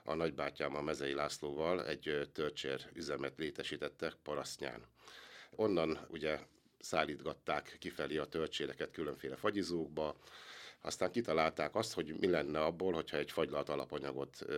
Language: Hungarian